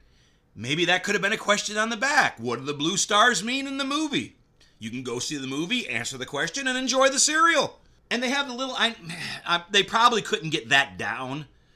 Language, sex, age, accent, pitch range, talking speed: English, male, 40-59, American, 125-205 Hz, 220 wpm